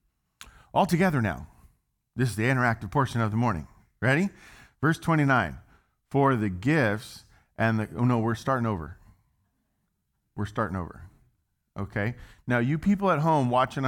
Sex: male